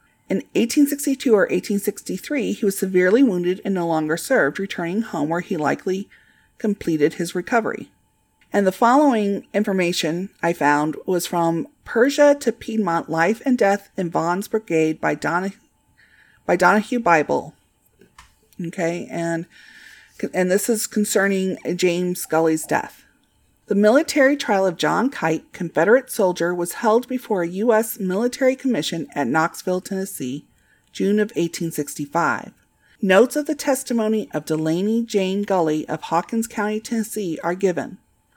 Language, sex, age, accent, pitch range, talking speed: English, female, 40-59, American, 170-220 Hz, 135 wpm